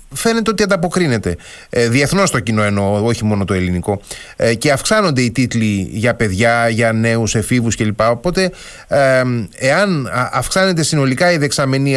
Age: 30-49